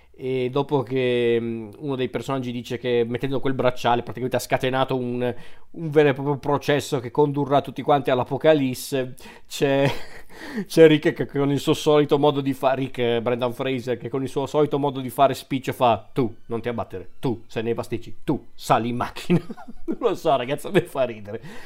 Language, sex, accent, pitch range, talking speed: Italian, male, native, 125-150 Hz, 190 wpm